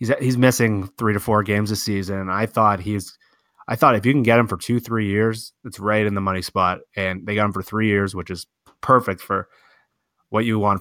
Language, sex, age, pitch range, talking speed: English, male, 20-39, 95-115 Hz, 240 wpm